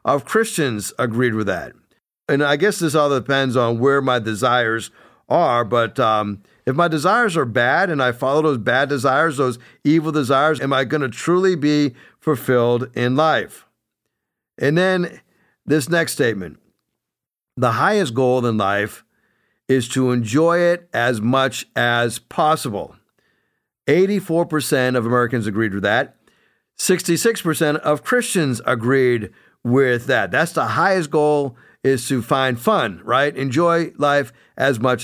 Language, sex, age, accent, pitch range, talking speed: English, male, 50-69, American, 125-160 Hz, 140 wpm